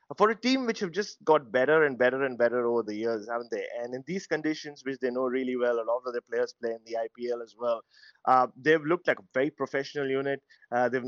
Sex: male